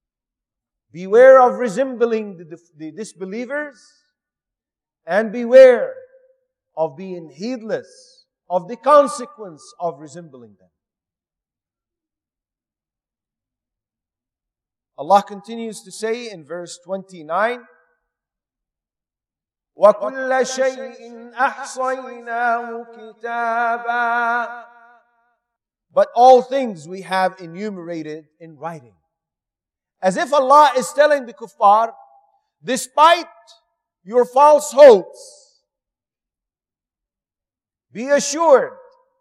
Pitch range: 200-295 Hz